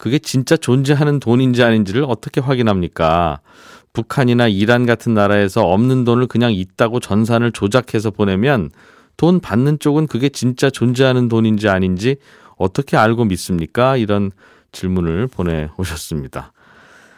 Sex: male